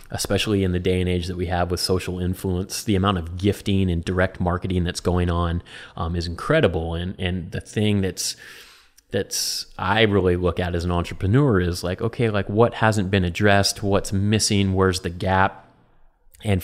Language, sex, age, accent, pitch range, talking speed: English, male, 30-49, American, 90-100 Hz, 190 wpm